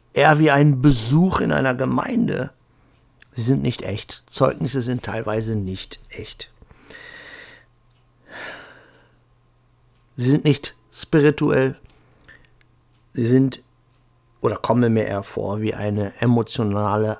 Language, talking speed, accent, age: German, 105 wpm, German, 60-79